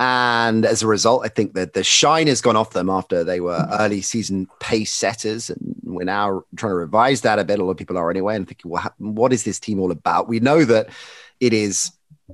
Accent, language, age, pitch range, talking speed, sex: British, English, 30-49, 95-120 Hz, 240 wpm, male